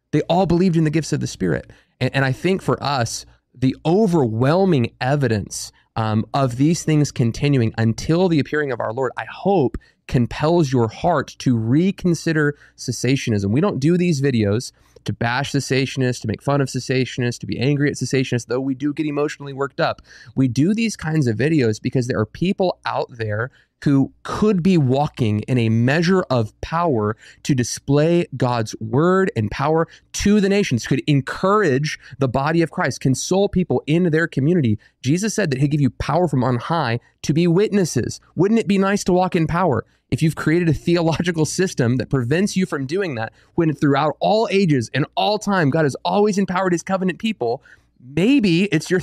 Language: English